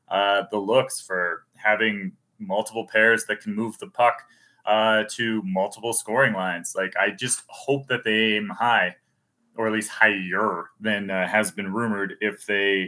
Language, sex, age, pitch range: English, male, 30-49, 105-135 Hz